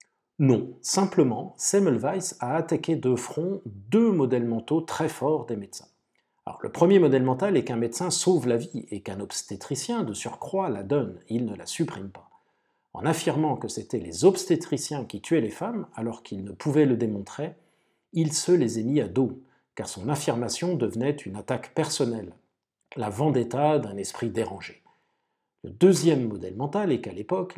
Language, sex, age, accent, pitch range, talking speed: French, male, 40-59, French, 120-175 Hz, 170 wpm